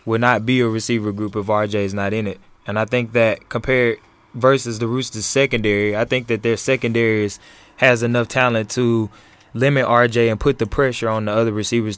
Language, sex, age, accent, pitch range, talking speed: English, male, 20-39, American, 115-130 Hz, 200 wpm